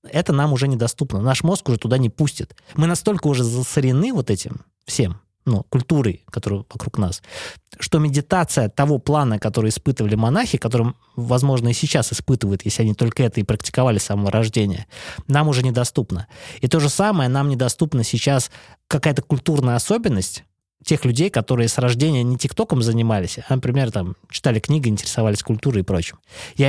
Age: 20-39